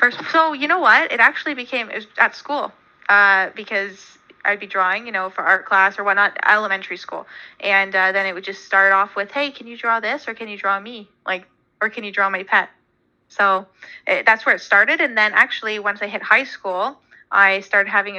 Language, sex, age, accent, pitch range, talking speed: English, female, 20-39, American, 190-235 Hz, 215 wpm